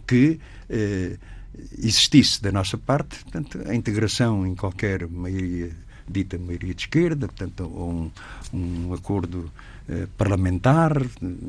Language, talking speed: Portuguese, 120 wpm